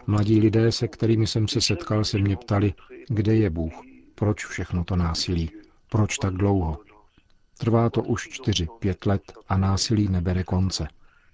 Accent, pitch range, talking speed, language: native, 95-110 Hz, 160 wpm, Czech